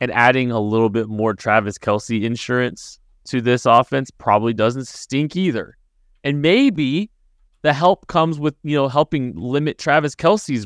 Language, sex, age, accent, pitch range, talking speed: English, male, 20-39, American, 95-140 Hz, 160 wpm